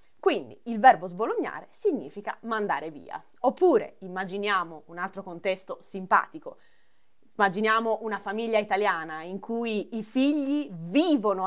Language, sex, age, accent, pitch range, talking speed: Italian, female, 20-39, native, 190-275 Hz, 115 wpm